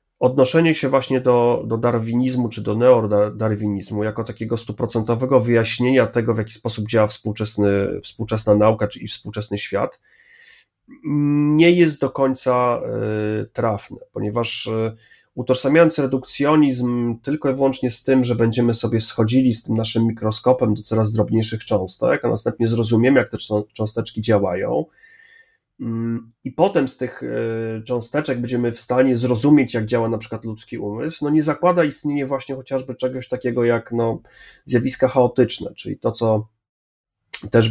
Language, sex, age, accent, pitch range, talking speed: Polish, male, 30-49, native, 110-130 Hz, 135 wpm